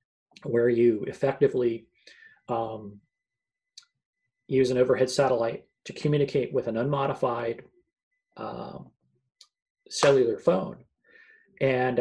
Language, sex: English, male